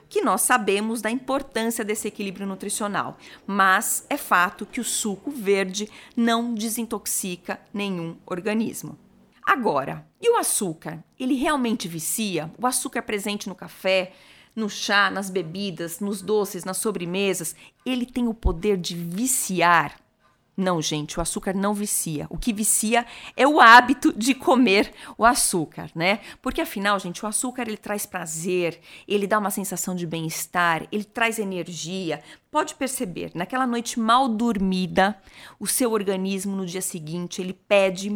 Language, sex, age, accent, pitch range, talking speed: Portuguese, female, 40-59, Brazilian, 190-250 Hz, 145 wpm